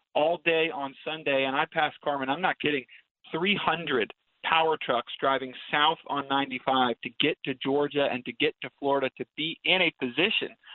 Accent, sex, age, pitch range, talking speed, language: American, male, 40-59, 130-160 Hz, 180 wpm, English